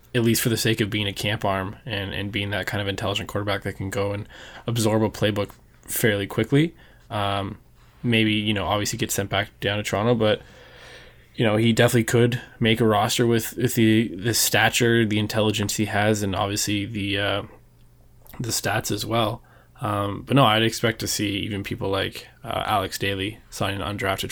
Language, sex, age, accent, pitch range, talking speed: English, male, 20-39, American, 100-115 Hz, 195 wpm